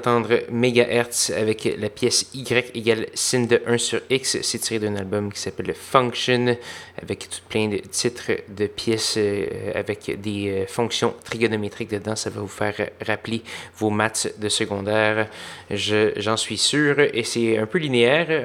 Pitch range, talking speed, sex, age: 105-120 Hz, 165 wpm, male, 20-39